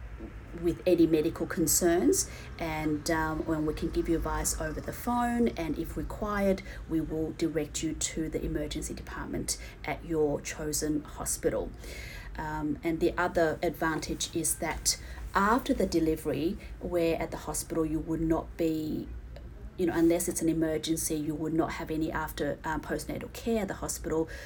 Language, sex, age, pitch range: English, female, 30-49, 150-170 Hz